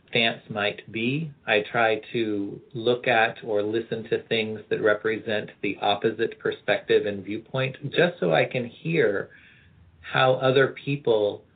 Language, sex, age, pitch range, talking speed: English, male, 40-59, 105-130 Hz, 135 wpm